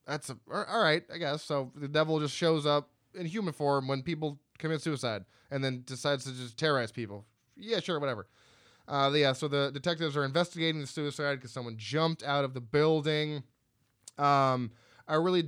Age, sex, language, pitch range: 20-39, male, English, 125-165 Hz